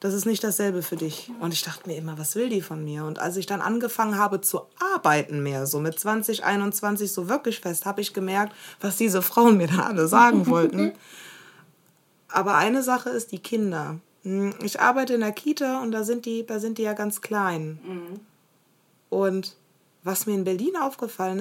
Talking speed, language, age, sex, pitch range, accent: 195 wpm, German, 20-39, female, 195-230 Hz, German